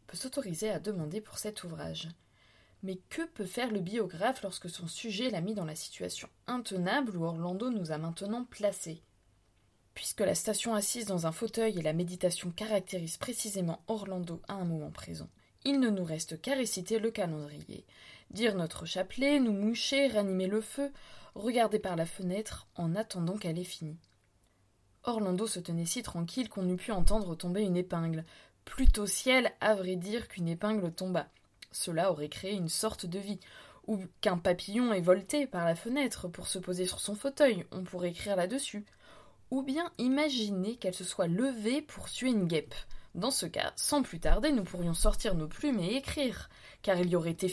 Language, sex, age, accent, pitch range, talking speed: French, female, 20-39, French, 170-225 Hz, 180 wpm